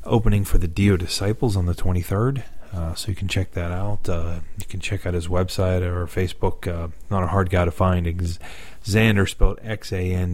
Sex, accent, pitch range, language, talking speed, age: male, American, 85-100 Hz, English, 210 wpm, 30-49